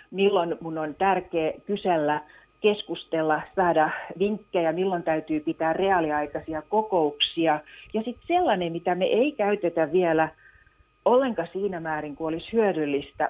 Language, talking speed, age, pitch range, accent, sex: Finnish, 120 wpm, 50-69, 160-210 Hz, native, female